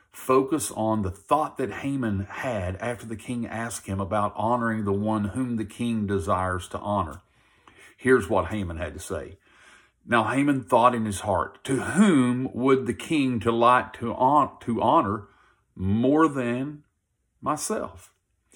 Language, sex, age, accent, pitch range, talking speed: English, male, 50-69, American, 95-125 Hz, 145 wpm